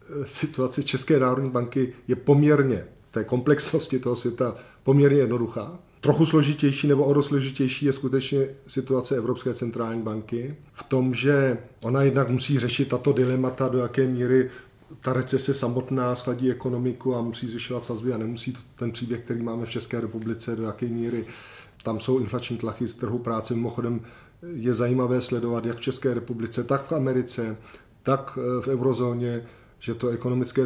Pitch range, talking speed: 115-130 Hz, 160 wpm